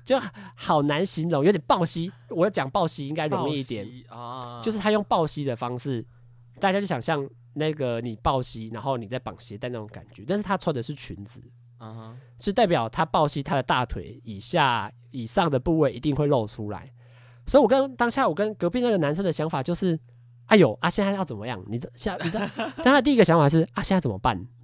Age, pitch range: 20-39, 120-165 Hz